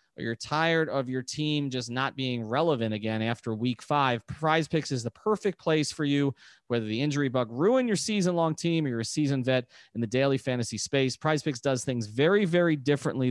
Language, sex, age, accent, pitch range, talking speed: English, male, 30-49, American, 125-165 Hz, 215 wpm